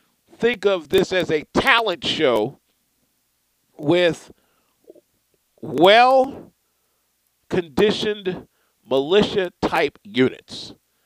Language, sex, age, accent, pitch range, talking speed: English, male, 50-69, American, 110-175 Hz, 60 wpm